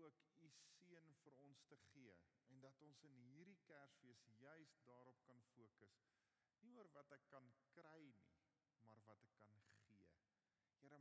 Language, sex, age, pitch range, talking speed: English, male, 40-59, 120-155 Hz, 165 wpm